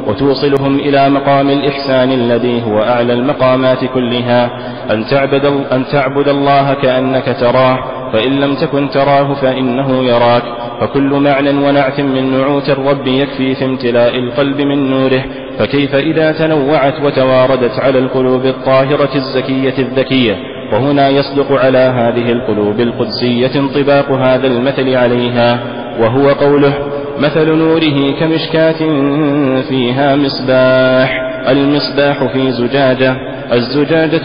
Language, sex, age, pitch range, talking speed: Arabic, male, 30-49, 130-140 Hz, 110 wpm